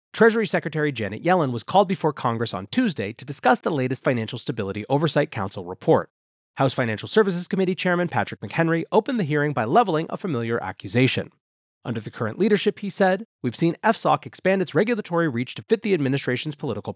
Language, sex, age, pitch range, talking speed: English, male, 30-49, 115-170 Hz, 185 wpm